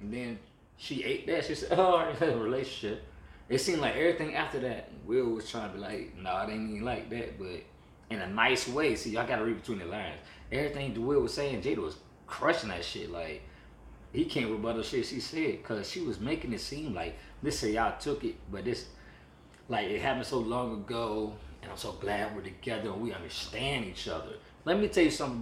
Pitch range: 95-130 Hz